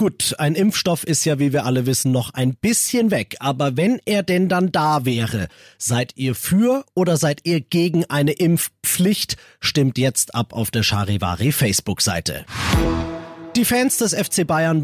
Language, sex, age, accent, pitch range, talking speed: German, male, 30-49, German, 125-165 Hz, 160 wpm